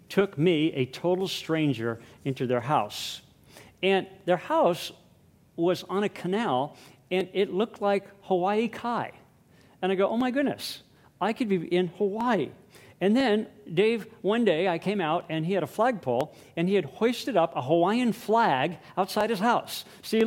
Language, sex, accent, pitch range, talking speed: English, male, American, 145-205 Hz, 170 wpm